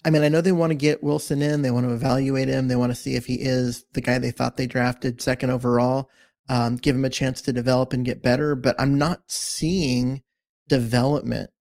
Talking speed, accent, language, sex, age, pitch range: 230 wpm, American, English, male, 30-49, 125-150 Hz